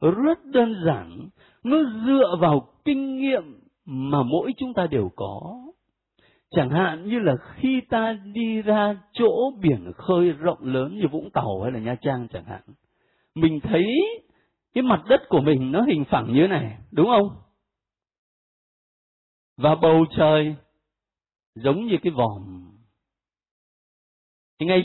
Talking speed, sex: 140 wpm, male